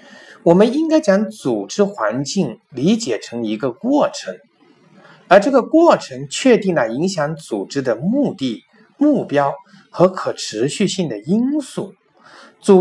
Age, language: 50-69, Chinese